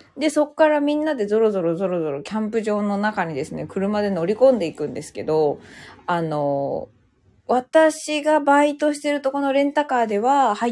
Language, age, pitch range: Japanese, 20-39, 165-245 Hz